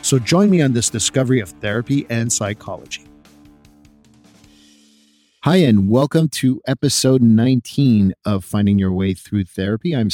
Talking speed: 135 wpm